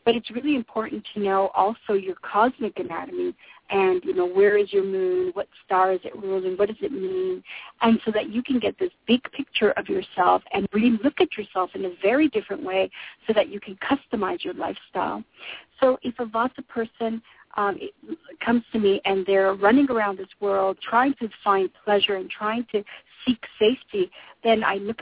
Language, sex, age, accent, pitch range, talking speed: English, female, 50-69, American, 210-280 Hz, 190 wpm